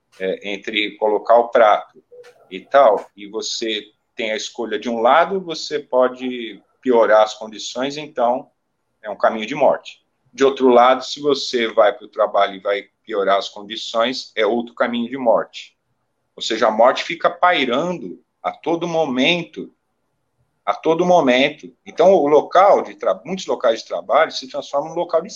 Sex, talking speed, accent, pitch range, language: male, 170 wpm, Brazilian, 120-195 Hz, Portuguese